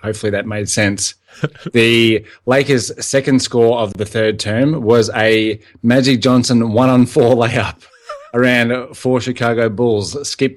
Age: 20-39